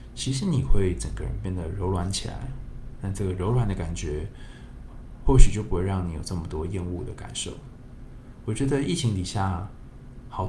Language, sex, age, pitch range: Chinese, male, 20-39, 95-125 Hz